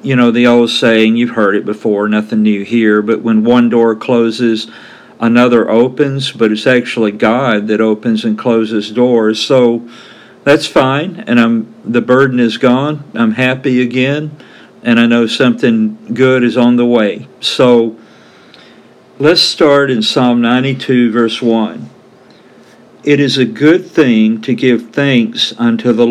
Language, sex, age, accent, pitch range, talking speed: English, male, 50-69, American, 115-140 Hz, 155 wpm